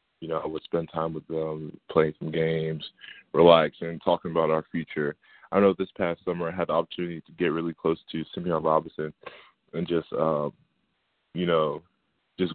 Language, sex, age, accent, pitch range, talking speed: English, male, 20-39, American, 80-85 Hz, 185 wpm